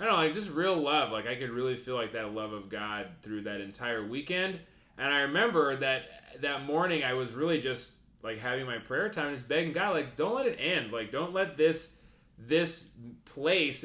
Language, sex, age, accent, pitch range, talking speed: English, male, 20-39, American, 115-145 Hz, 220 wpm